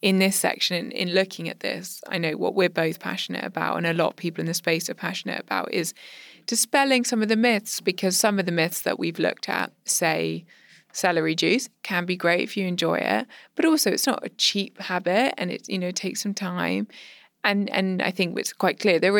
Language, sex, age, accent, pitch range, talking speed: English, female, 20-39, British, 175-205 Hz, 225 wpm